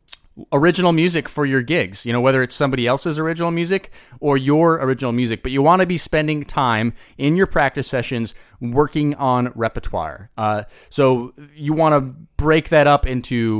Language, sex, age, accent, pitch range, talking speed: English, male, 30-49, American, 115-155 Hz, 175 wpm